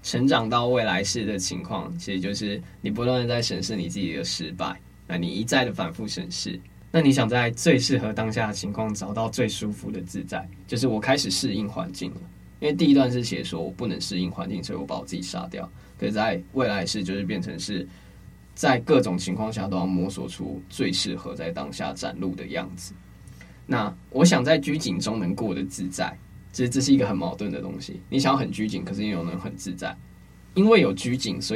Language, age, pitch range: Chinese, 20-39, 95-125 Hz